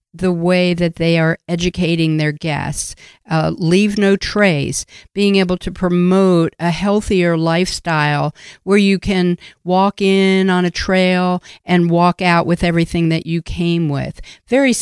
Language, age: English, 50-69